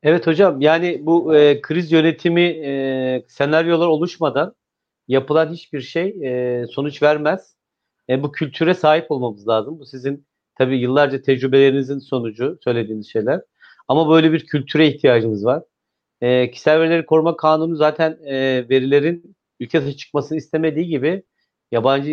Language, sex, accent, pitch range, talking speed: Turkish, male, native, 130-160 Hz, 135 wpm